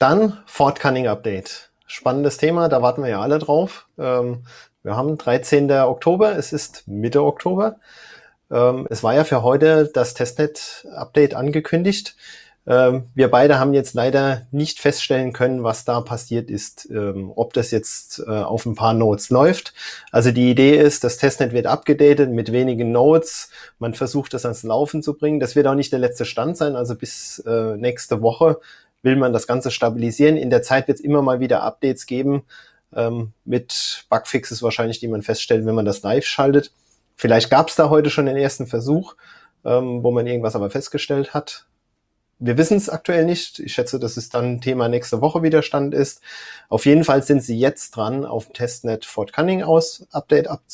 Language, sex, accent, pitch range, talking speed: German, male, German, 120-150 Hz, 175 wpm